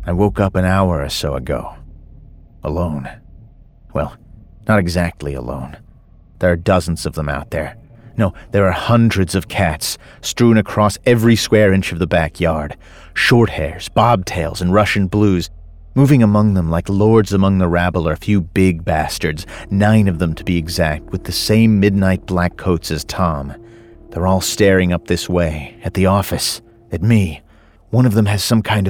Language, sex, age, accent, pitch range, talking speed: English, male, 40-59, American, 85-105 Hz, 175 wpm